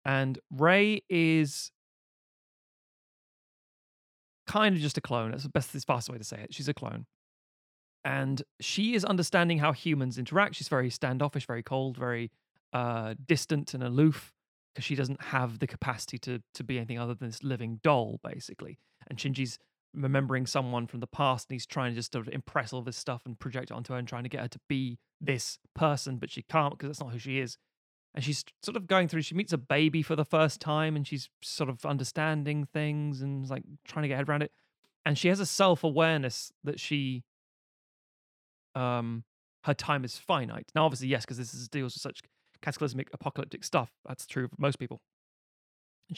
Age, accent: 30-49, British